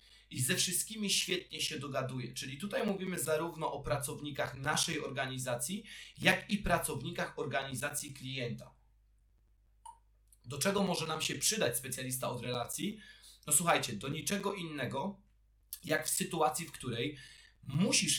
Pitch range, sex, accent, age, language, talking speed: 130-175 Hz, male, native, 30-49, Polish, 130 wpm